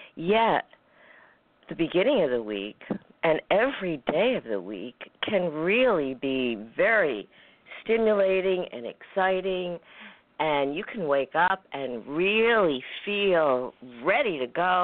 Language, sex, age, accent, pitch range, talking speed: English, female, 50-69, American, 135-180 Hz, 120 wpm